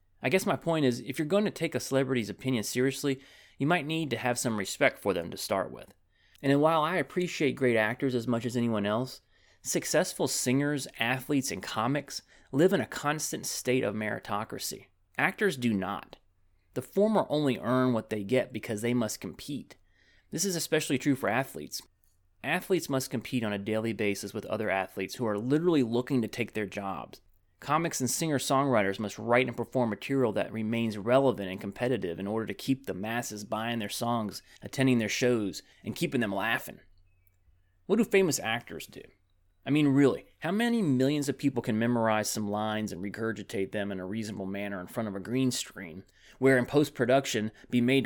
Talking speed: 190 wpm